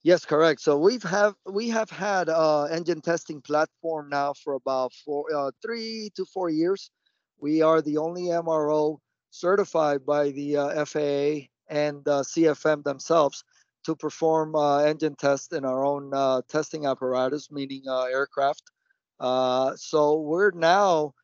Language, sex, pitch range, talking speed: English, male, 135-155 Hz, 155 wpm